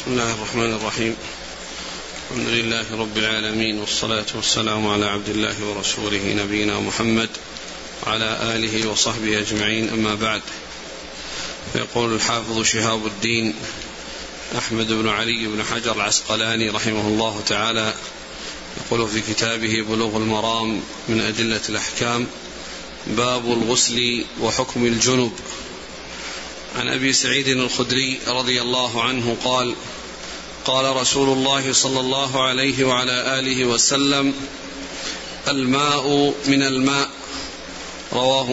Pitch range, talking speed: 110-140 Hz, 105 wpm